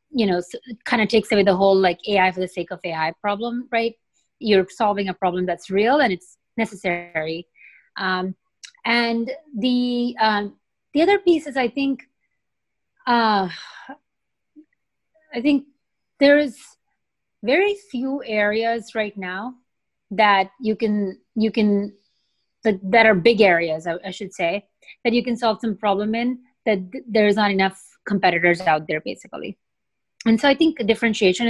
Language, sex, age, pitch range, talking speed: English, female, 30-49, 190-240 Hz, 155 wpm